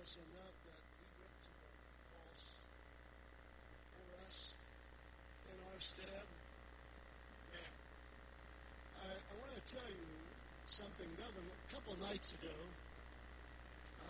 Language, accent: English, American